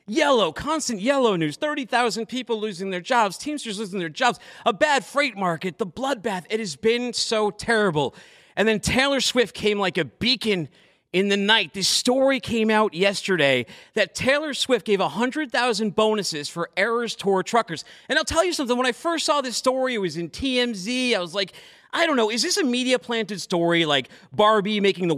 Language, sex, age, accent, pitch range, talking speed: English, male, 40-59, American, 190-260 Hz, 190 wpm